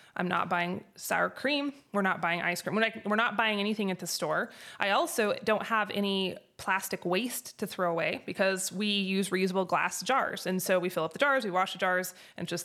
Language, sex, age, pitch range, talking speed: English, female, 20-39, 185-220 Hz, 230 wpm